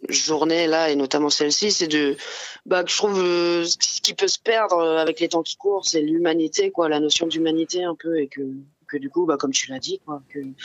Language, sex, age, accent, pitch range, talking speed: French, female, 20-39, French, 150-175 Hz, 235 wpm